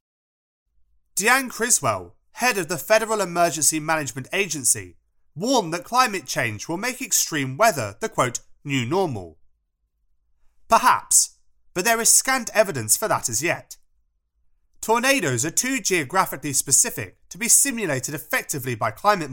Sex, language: male, English